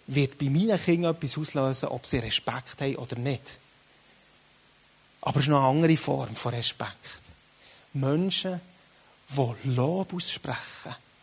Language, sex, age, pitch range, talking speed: German, male, 30-49, 135-185 Hz, 135 wpm